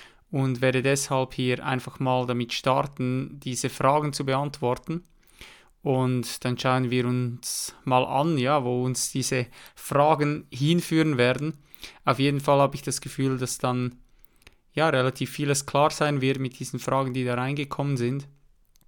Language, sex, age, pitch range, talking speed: German, male, 20-39, 130-150 Hz, 155 wpm